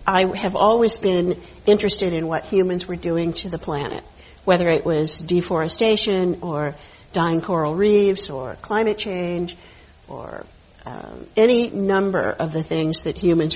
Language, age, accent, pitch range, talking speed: English, 50-69, American, 165-195 Hz, 145 wpm